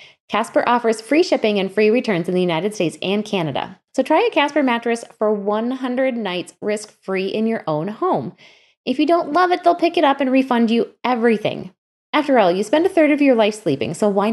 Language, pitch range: English, 180-265 Hz